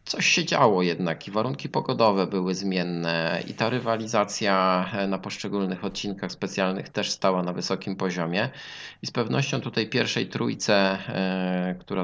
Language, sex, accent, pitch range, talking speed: Polish, male, native, 90-100 Hz, 140 wpm